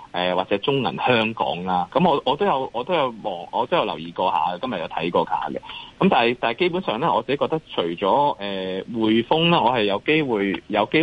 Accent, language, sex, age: native, Chinese, male, 30-49